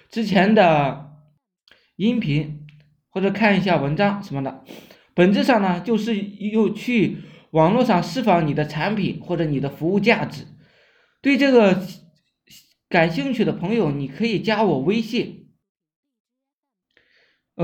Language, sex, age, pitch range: Chinese, male, 20-39, 165-220 Hz